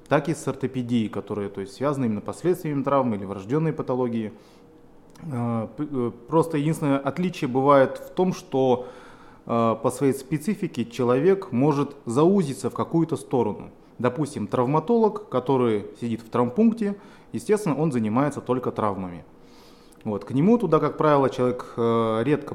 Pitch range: 115-155 Hz